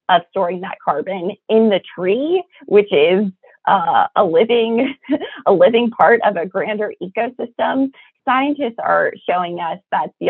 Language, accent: English, American